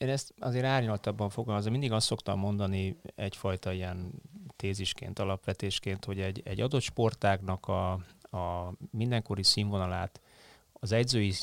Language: Hungarian